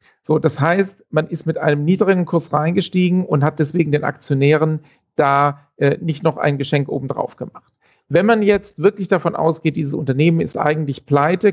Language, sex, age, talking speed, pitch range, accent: German, male, 40-59, 175 wpm, 150-185 Hz, German